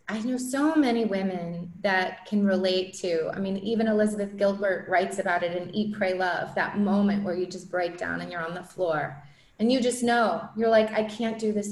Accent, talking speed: American, 220 wpm